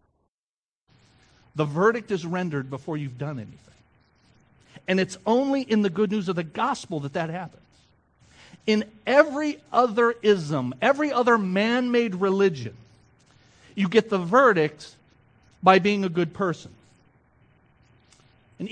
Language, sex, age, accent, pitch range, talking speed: English, male, 50-69, American, 130-190 Hz, 125 wpm